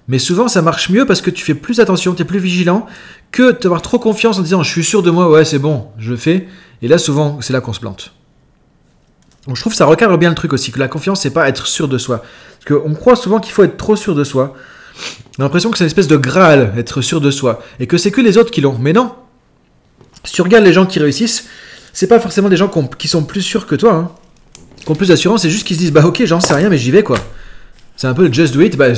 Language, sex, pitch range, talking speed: French, male, 135-185 Hz, 290 wpm